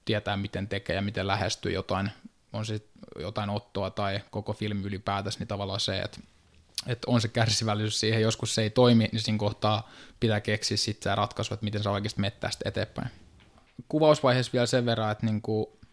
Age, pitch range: 20-39, 100-115 Hz